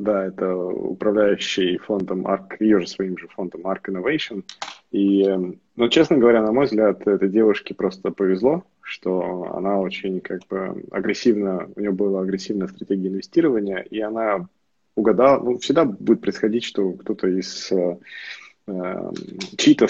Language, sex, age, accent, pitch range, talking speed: Russian, male, 20-39, native, 95-110 Hz, 140 wpm